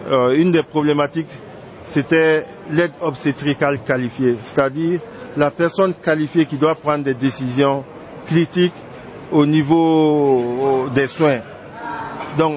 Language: French